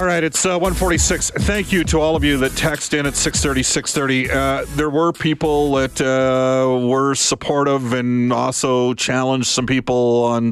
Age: 40-59